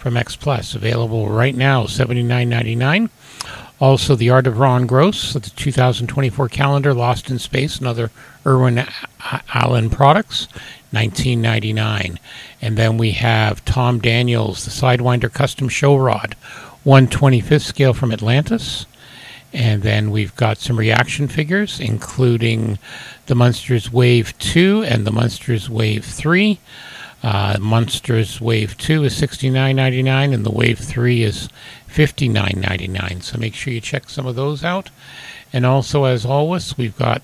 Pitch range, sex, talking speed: 115-135 Hz, male, 155 wpm